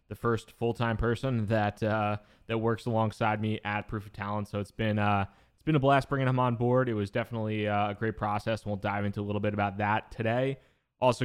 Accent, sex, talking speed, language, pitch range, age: American, male, 230 wpm, English, 100-110 Hz, 20-39